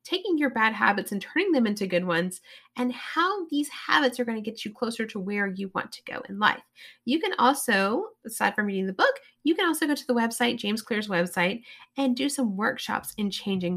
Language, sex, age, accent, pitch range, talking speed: English, female, 30-49, American, 195-255 Hz, 225 wpm